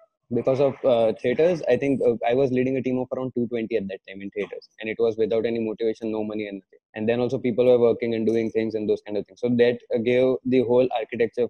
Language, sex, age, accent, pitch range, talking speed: Hindi, male, 20-39, native, 110-130 Hz, 265 wpm